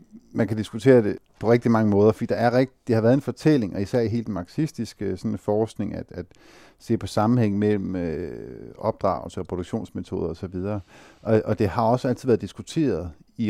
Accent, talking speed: native, 190 wpm